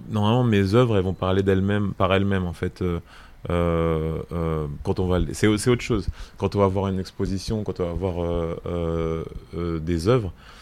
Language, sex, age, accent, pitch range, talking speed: French, male, 20-39, French, 85-95 Hz, 190 wpm